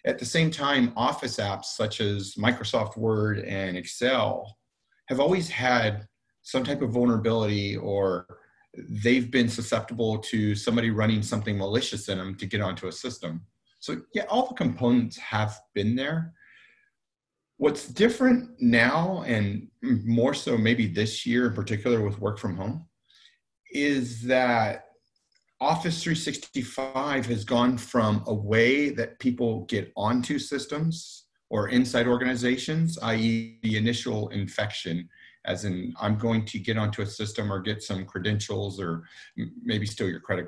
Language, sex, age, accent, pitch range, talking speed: English, male, 30-49, American, 105-130 Hz, 145 wpm